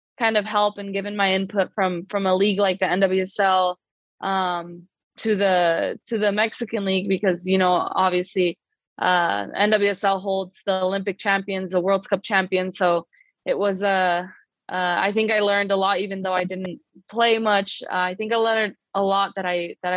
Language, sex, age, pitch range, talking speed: English, female, 20-39, 185-205 Hz, 190 wpm